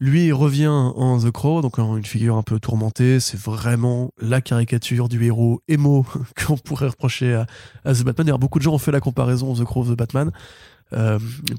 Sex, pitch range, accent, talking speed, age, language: male, 110-130 Hz, French, 205 wpm, 20-39, French